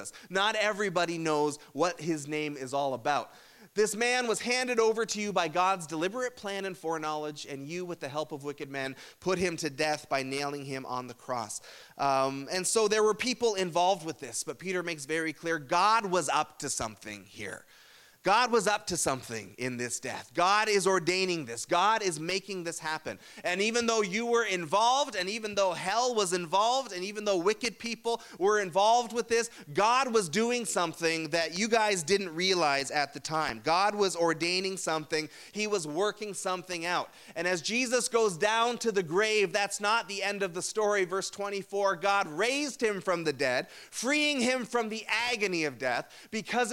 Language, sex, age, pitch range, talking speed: English, male, 30-49, 170-230 Hz, 195 wpm